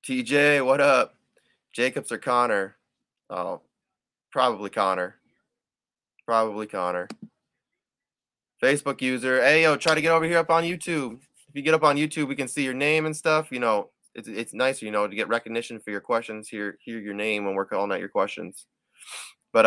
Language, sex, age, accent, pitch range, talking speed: English, male, 20-39, American, 110-150 Hz, 185 wpm